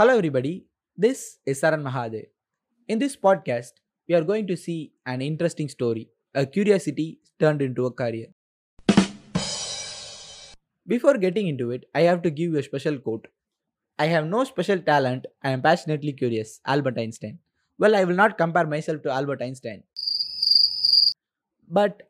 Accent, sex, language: native, male, Tamil